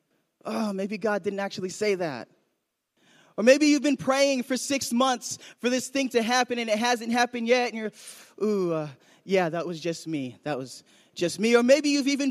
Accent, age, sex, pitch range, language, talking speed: American, 20-39, male, 175-235 Hz, English, 205 wpm